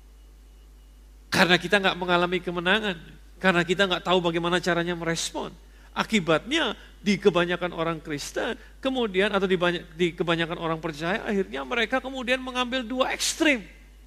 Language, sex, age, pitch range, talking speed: Indonesian, male, 40-59, 170-235 Hz, 130 wpm